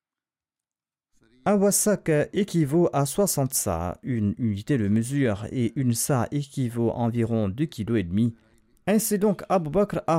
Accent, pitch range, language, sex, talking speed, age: French, 110-155 Hz, French, male, 135 wpm, 40-59